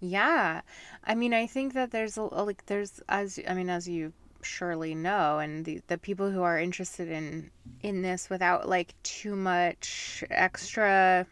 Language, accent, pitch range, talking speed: English, American, 170-205 Hz, 170 wpm